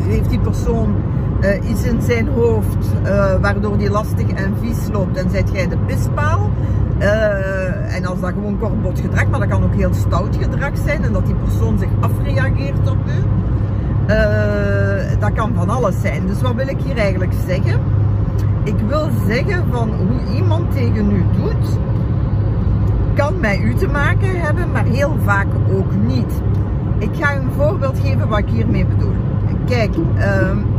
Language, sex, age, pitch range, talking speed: Dutch, female, 50-69, 100-115 Hz, 170 wpm